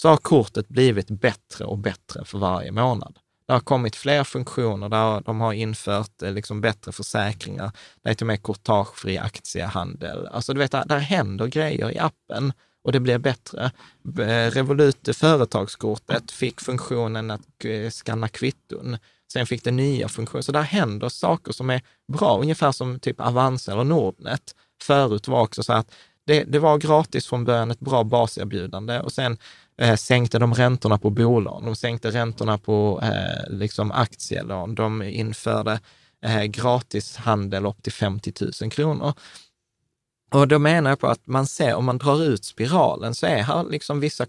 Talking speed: 160 wpm